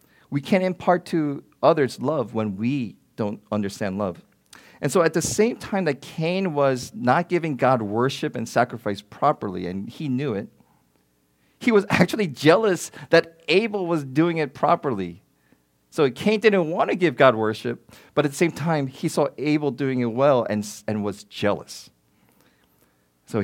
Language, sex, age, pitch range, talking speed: English, male, 40-59, 105-165 Hz, 165 wpm